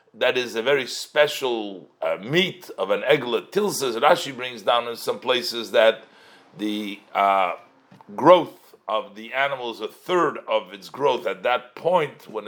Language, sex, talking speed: English, male, 165 wpm